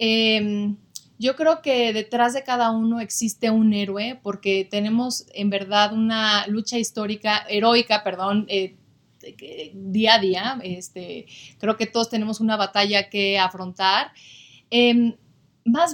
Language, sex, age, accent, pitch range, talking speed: English, female, 30-49, Mexican, 195-230 Hz, 130 wpm